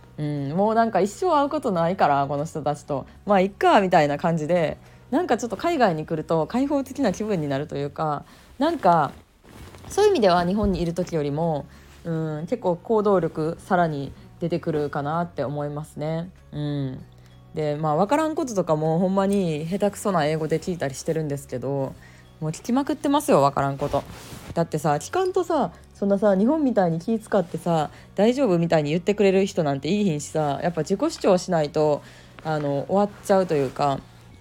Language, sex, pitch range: Japanese, female, 150-215 Hz